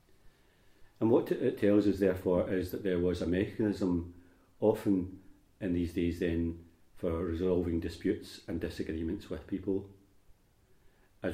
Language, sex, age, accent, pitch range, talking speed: English, male, 40-59, British, 85-100 Hz, 130 wpm